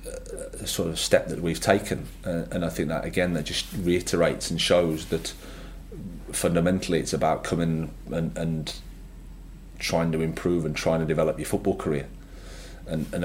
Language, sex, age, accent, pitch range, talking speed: English, male, 30-49, British, 80-90 Hz, 165 wpm